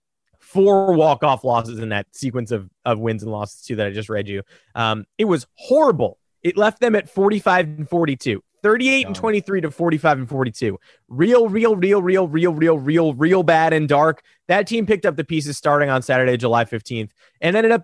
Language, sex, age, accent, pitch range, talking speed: English, male, 20-39, American, 130-185 Hz, 200 wpm